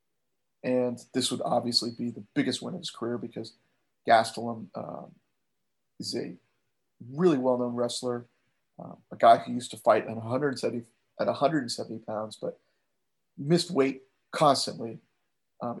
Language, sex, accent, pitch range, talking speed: English, male, American, 115-130 Hz, 135 wpm